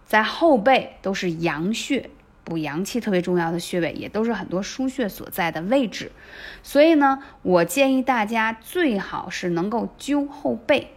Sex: female